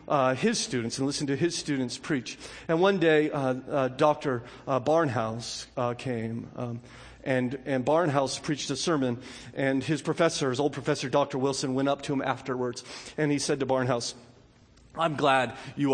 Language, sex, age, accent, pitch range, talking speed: English, male, 40-59, American, 125-150 Hz, 175 wpm